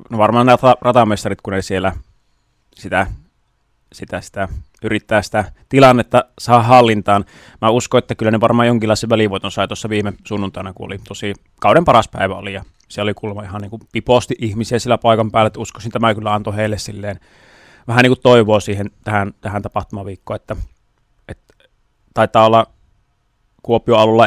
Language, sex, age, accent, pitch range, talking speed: Finnish, male, 30-49, native, 100-115 Hz, 160 wpm